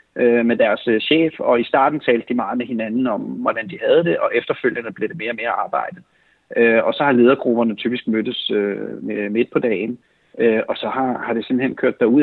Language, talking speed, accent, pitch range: Danish, 195 wpm, native, 110-125 Hz